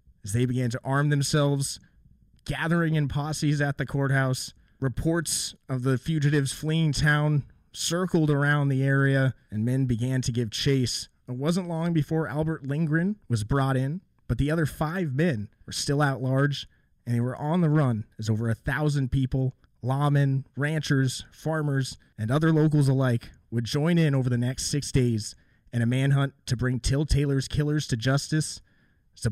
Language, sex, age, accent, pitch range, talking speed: English, male, 30-49, American, 120-150 Hz, 170 wpm